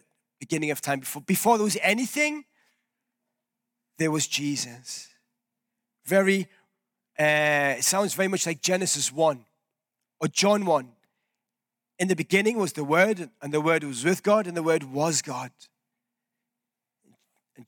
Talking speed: 140 wpm